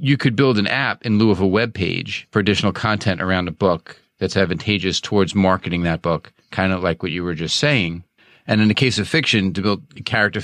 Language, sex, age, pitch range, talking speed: English, male, 40-59, 95-110 Hz, 235 wpm